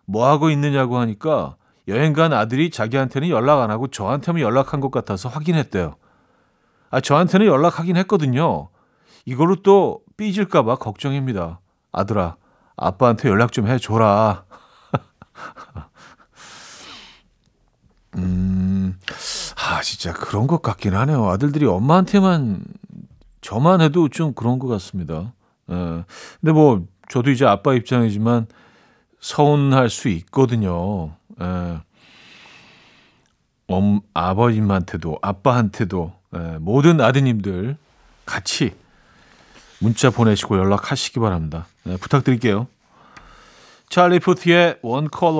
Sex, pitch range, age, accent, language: male, 100-145 Hz, 40-59, native, Korean